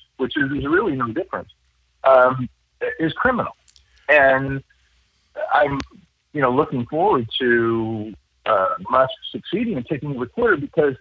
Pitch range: 115-160 Hz